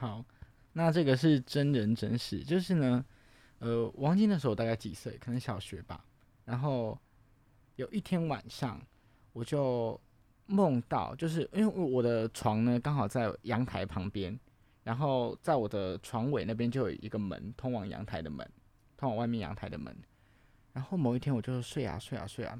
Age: 20-39